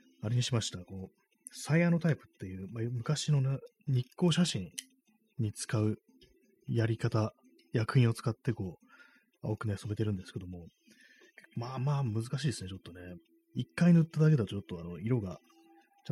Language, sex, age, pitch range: Japanese, male, 30-49, 95-135 Hz